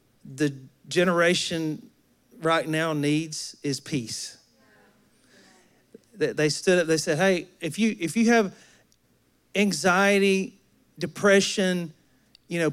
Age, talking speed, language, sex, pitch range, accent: 40-59, 105 wpm, English, male, 170-250 Hz, American